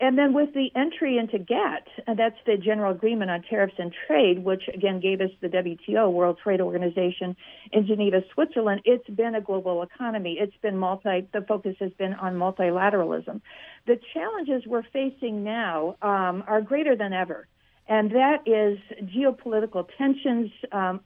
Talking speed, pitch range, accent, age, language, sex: 165 wpm, 195-255 Hz, American, 50-69, English, female